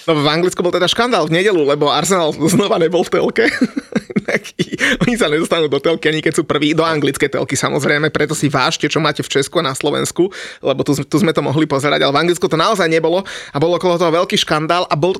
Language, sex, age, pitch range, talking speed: Slovak, male, 30-49, 150-175 Hz, 235 wpm